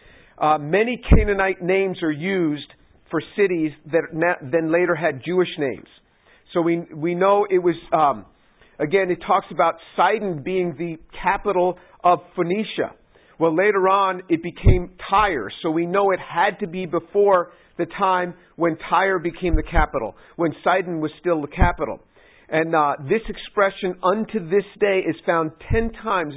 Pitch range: 165-195 Hz